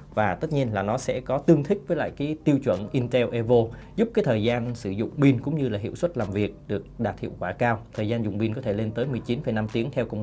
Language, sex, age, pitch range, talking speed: Vietnamese, male, 20-39, 110-140 Hz, 275 wpm